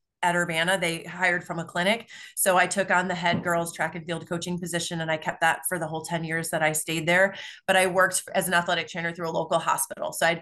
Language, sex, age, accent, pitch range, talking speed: English, female, 30-49, American, 165-190 Hz, 260 wpm